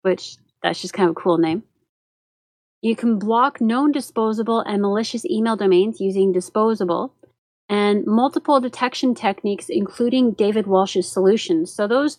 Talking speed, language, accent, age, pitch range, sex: 145 wpm, English, American, 30-49, 195-260 Hz, female